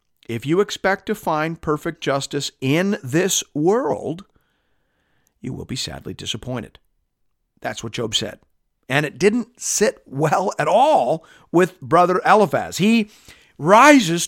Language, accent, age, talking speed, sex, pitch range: English, American, 50-69, 130 wpm, male, 155-225 Hz